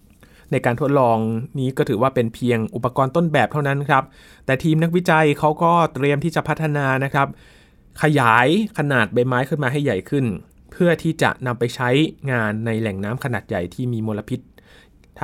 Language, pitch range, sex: Thai, 110-140 Hz, male